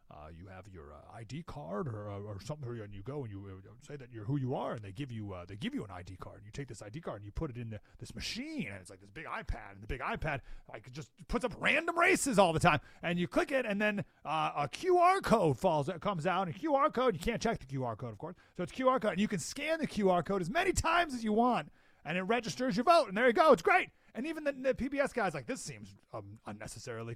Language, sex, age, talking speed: English, male, 30-49, 285 wpm